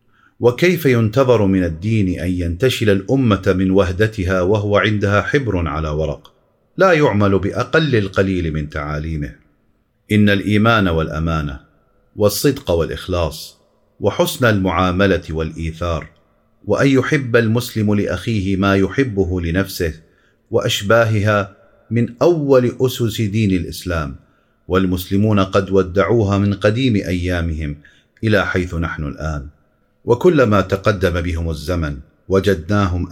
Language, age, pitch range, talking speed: Arabic, 40-59, 85-110 Hz, 100 wpm